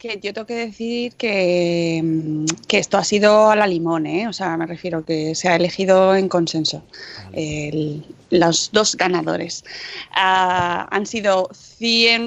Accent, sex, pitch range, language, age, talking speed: Spanish, female, 200-265 Hz, Spanish, 20-39, 150 wpm